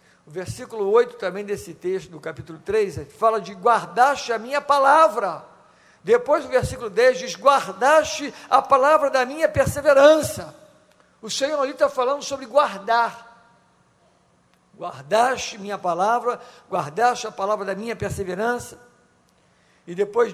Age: 60-79